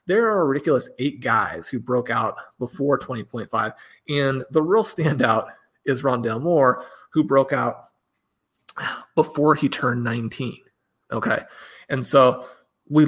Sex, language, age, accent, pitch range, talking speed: male, English, 30-49, American, 125-150 Hz, 130 wpm